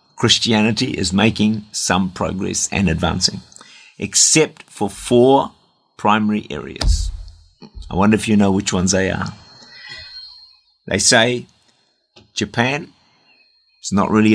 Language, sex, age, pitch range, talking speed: English, male, 50-69, 90-105 Hz, 115 wpm